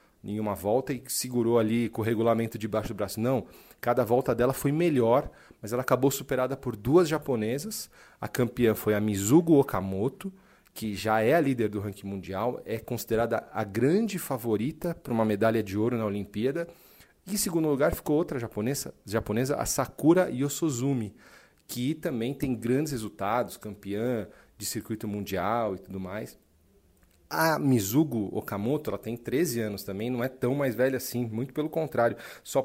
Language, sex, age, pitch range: Portuguese, male, 40-59, 110-150 Hz